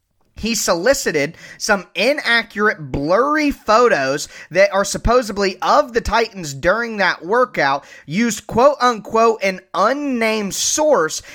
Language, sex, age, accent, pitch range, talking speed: English, male, 20-39, American, 180-245 Hz, 105 wpm